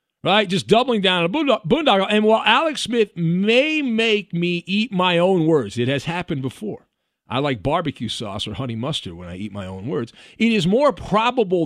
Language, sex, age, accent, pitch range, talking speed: English, male, 50-69, American, 140-200 Hz, 205 wpm